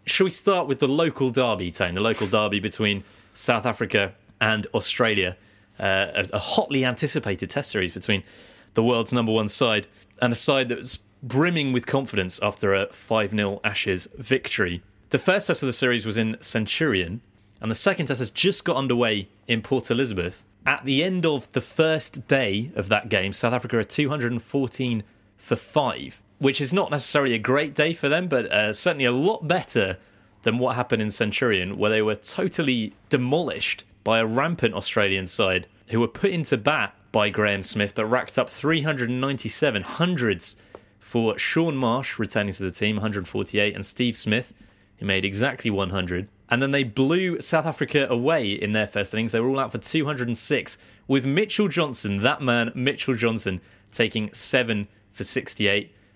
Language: English